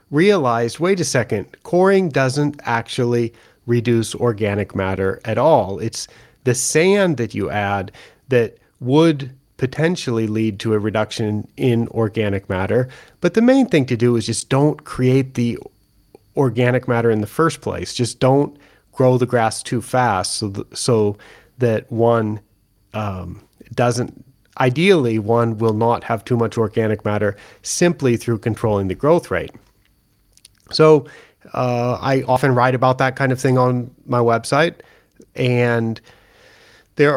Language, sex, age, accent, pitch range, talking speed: English, male, 40-59, American, 110-130 Hz, 140 wpm